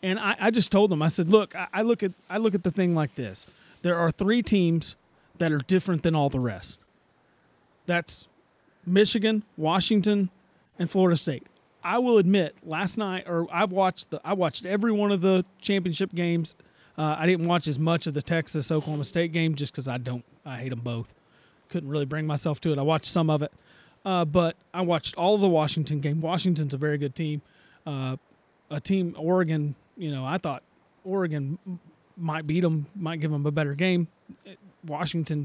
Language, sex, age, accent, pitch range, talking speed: English, male, 30-49, American, 150-185 Hz, 200 wpm